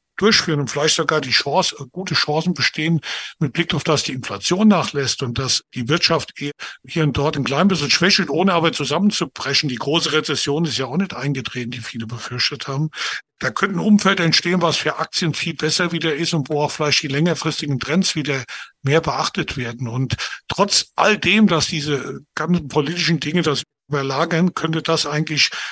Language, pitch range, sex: German, 145-170 Hz, male